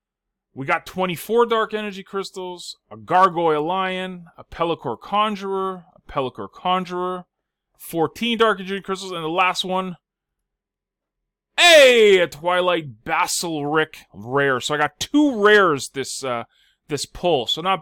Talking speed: 130 wpm